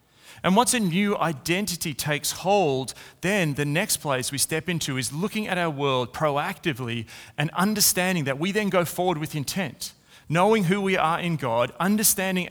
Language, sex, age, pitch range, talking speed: English, male, 30-49, 130-170 Hz, 175 wpm